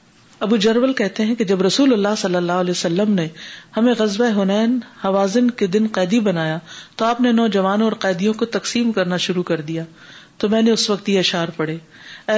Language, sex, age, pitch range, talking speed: Urdu, female, 50-69, 175-210 Hz, 200 wpm